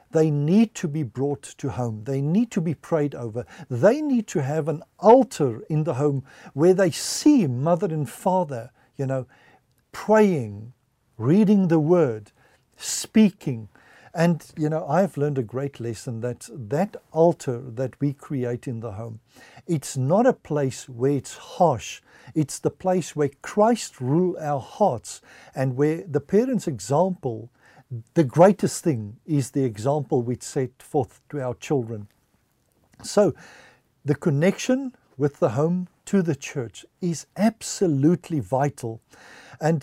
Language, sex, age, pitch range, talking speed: English, male, 60-79, 130-180 Hz, 145 wpm